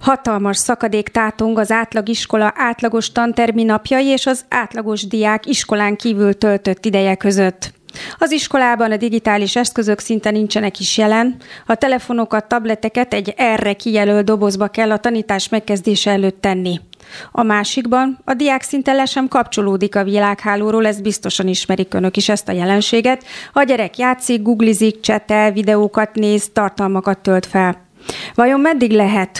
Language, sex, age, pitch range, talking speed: Hungarian, female, 40-59, 205-230 Hz, 140 wpm